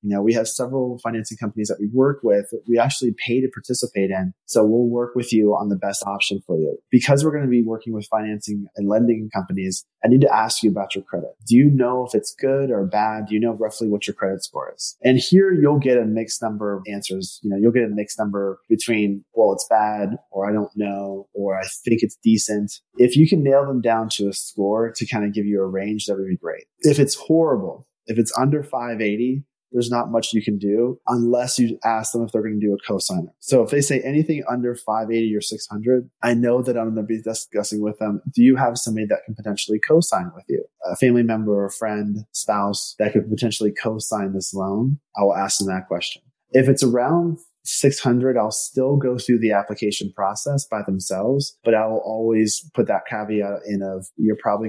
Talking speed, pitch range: 230 wpm, 105-125 Hz